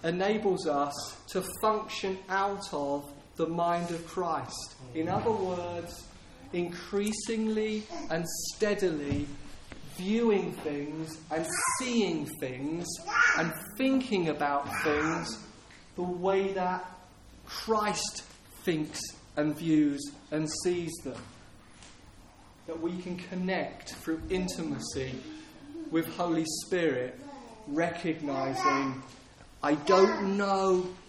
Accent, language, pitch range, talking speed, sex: British, English, 155-195 Hz, 95 wpm, male